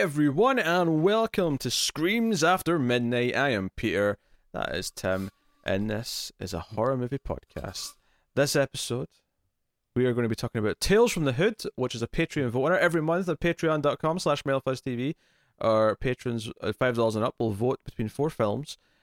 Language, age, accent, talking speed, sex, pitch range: English, 20-39, British, 175 wpm, male, 100-135 Hz